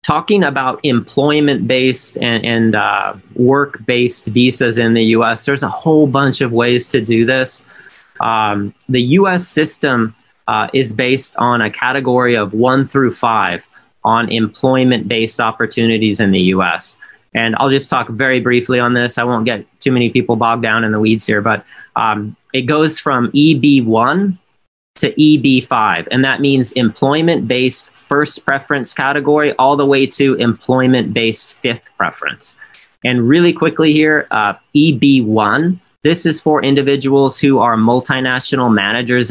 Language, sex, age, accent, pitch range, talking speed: English, male, 30-49, American, 115-140 Hz, 150 wpm